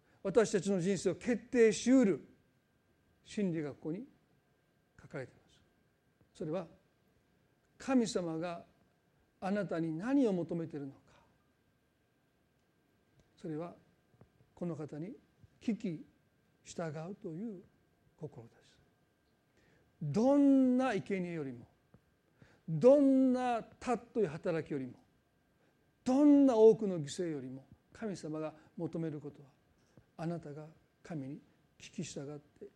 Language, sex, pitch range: Japanese, male, 160-255 Hz